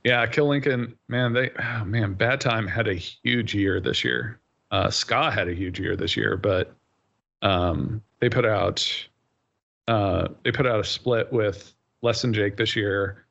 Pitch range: 100-115 Hz